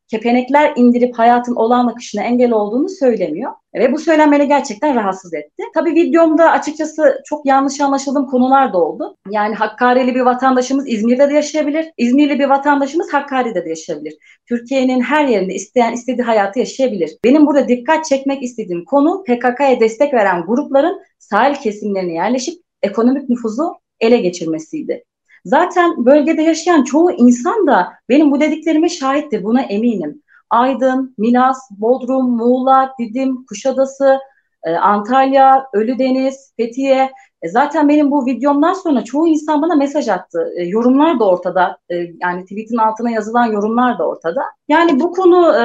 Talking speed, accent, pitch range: 135 wpm, native, 225-295 Hz